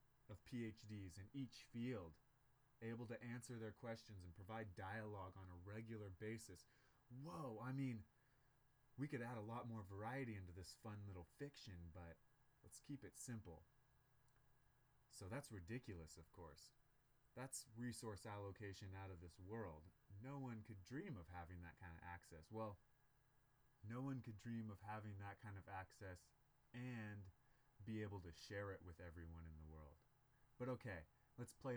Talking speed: 160 wpm